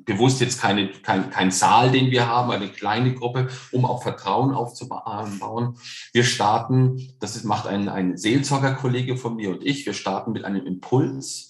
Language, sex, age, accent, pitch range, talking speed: German, male, 40-59, German, 100-125 Hz, 170 wpm